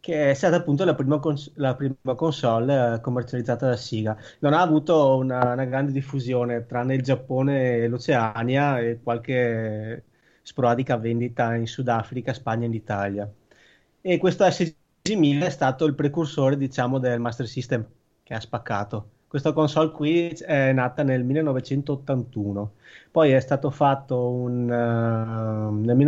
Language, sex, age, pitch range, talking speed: Italian, male, 20-39, 120-145 Hz, 145 wpm